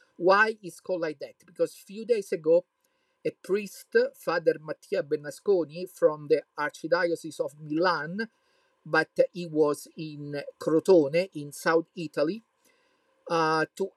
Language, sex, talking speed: English, male, 130 wpm